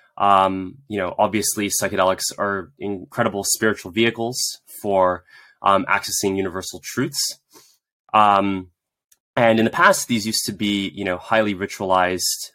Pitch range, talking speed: 95-105 Hz, 130 wpm